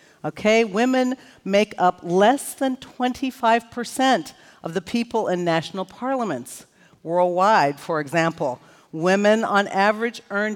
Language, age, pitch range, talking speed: English, 50-69, 180-245 Hz, 115 wpm